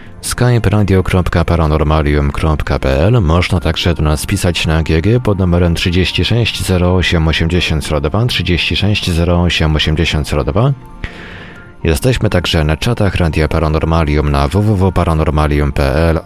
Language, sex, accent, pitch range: Polish, male, native, 80-100 Hz